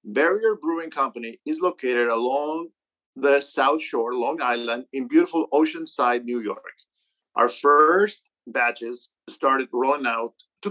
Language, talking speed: English, 130 wpm